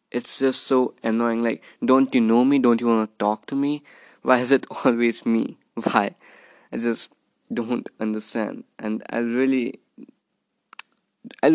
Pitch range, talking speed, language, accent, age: 115-145 Hz, 150 wpm, English, Indian, 20-39